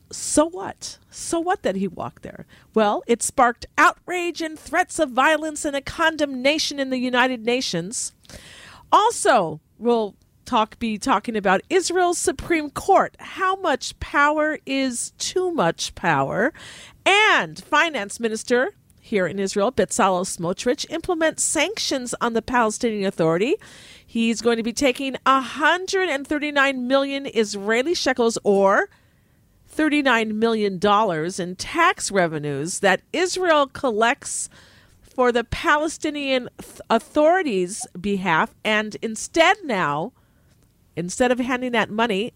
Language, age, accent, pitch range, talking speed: English, 50-69, American, 205-290 Hz, 120 wpm